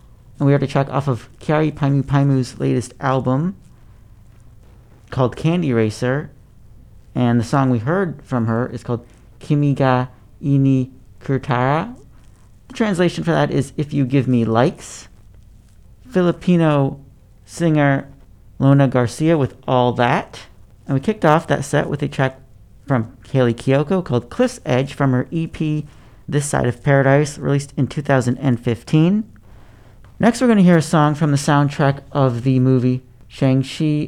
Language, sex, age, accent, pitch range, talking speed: English, male, 50-69, American, 120-145 Hz, 145 wpm